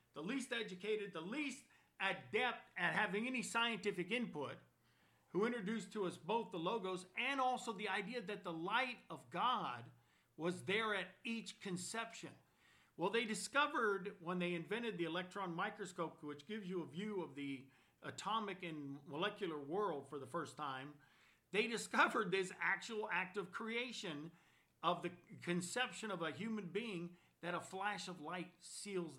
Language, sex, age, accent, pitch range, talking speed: English, male, 50-69, American, 155-215 Hz, 155 wpm